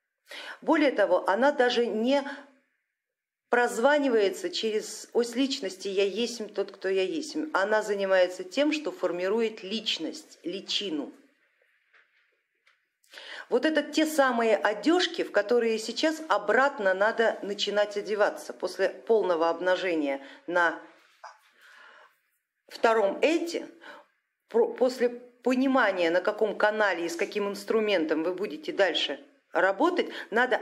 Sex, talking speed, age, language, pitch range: female, 105 wpm, 50-69, Russian, 205-285 Hz